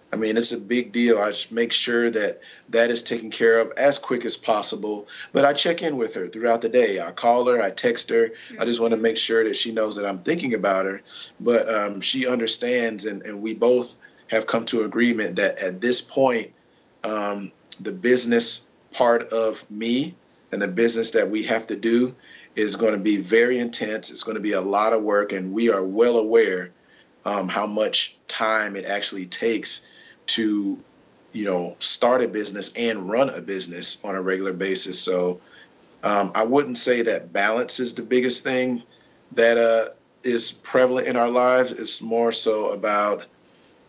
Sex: male